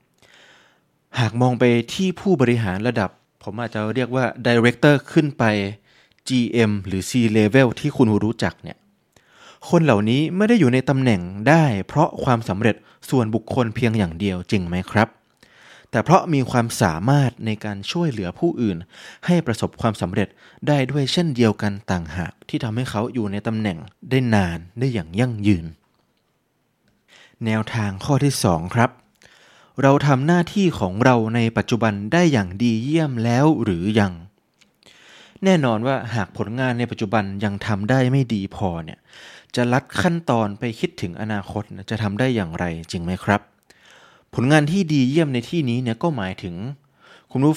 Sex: male